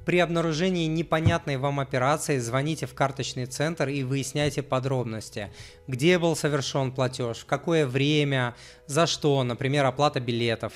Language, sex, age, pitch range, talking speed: Russian, male, 20-39, 125-155 Hz, 135 wpm